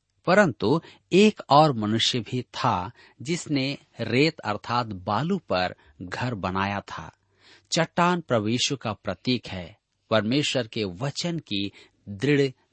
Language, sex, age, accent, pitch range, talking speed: Hindi, male, 40-59, native, 100-155 Hz, 115 wpm